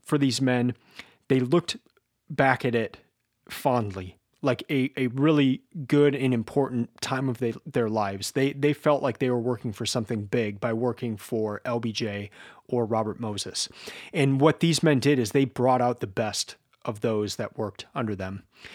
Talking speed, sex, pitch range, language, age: 170 wpm, male, 110-140 Hz, English, 30-49